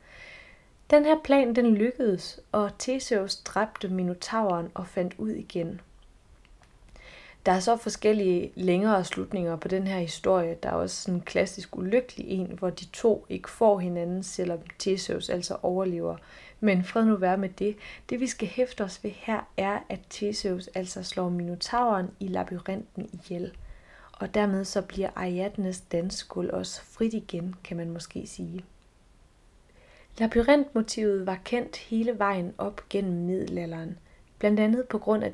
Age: 30-49